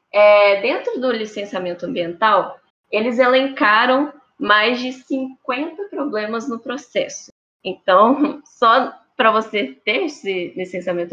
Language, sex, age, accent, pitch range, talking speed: Portuguese, female, 10-29, Brazilian, 205-265 Hz, 100 wpm